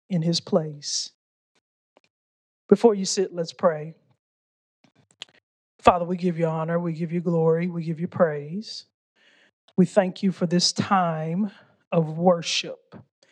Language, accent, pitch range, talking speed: English, American, 170-220 Hz, 130 wpm